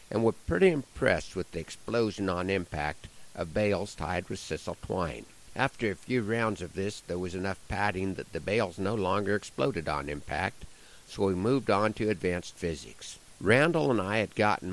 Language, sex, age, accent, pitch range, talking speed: English, male, 60-79, American, 90-115 Hz, 185 wpm